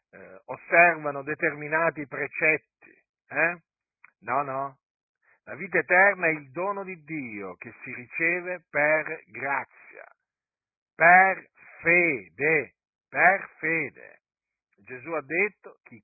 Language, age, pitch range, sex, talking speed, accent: Italian, 50-69, 120-155 Hz, male, 100 wpm, native